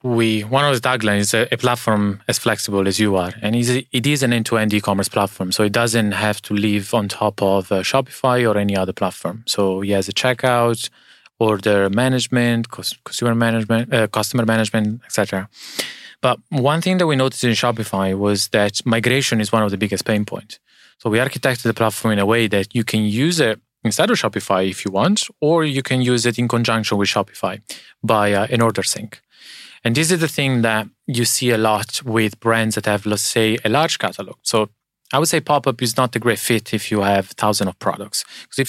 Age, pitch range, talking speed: 20-39, 105-125 Hz, 215 wpm